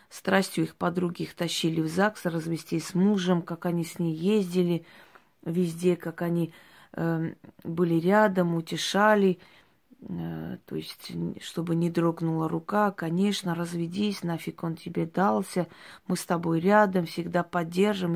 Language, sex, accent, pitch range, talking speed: Russian, female, native, 170-195 Hz, 135 wpm